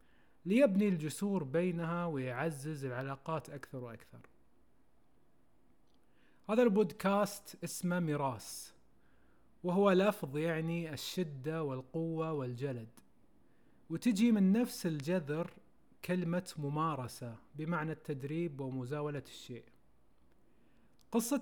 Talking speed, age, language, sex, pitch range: 80 wpm, 30-49, Arabic, male, 140-190 Hz